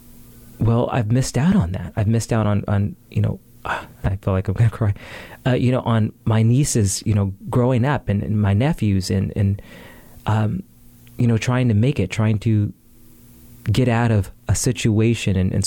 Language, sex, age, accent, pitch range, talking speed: English, male, 30-49, American, 105-125 Hz, 205 wpm